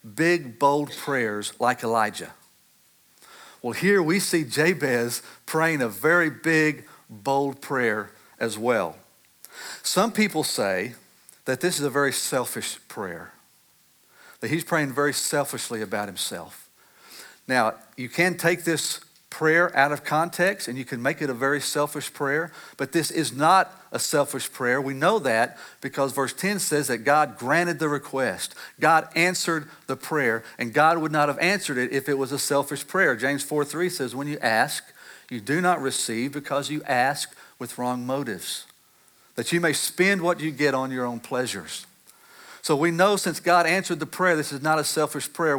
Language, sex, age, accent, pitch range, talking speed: English, male, 50-69, American, 135-170 Hz, 170 wpm